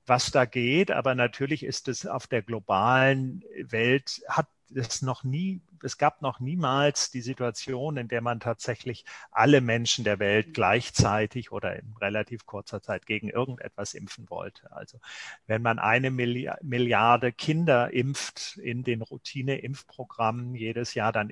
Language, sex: German, male